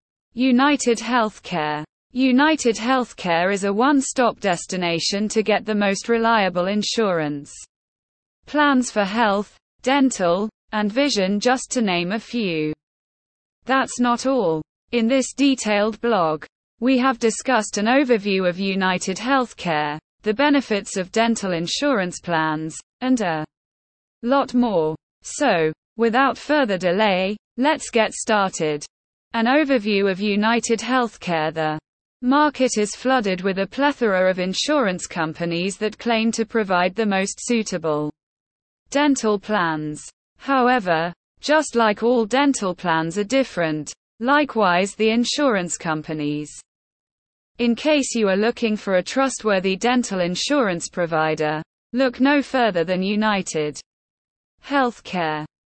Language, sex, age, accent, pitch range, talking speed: English, female, 20-39, British, 180-250 Hz, 120 wpm